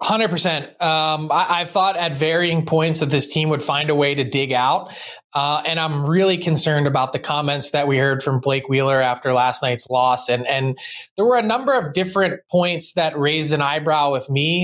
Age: 20-39